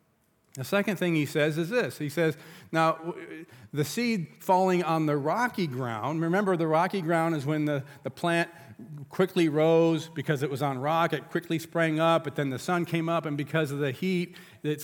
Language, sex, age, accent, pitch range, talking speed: English, male, 40-59, American, 155-190 Hz, 200 wpm